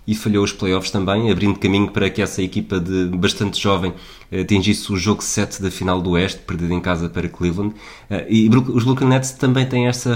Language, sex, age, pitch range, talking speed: Portuguese, male, 20-39, 90-105 Hz, 200 wpm